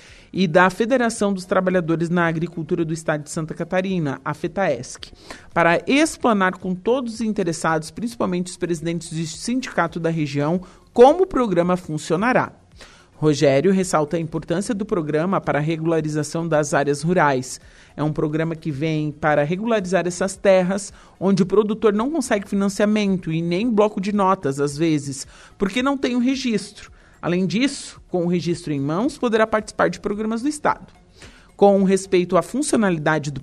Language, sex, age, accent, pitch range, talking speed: Portuguese, male, 40-59, Brazilian, 160-200 Hz, 160 wpm